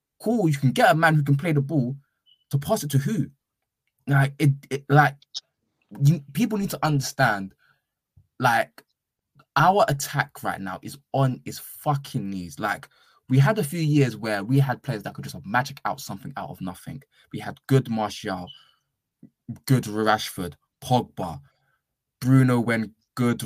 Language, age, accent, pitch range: English, 20-39, British, 120-145 Hz